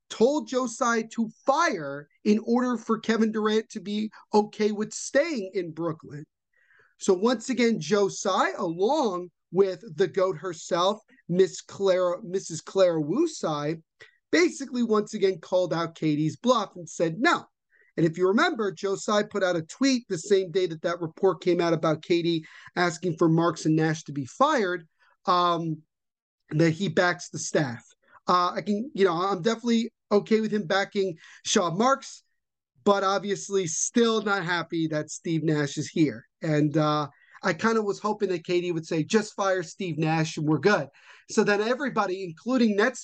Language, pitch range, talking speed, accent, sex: English, 165-220 Hz, 165 wpm, American, male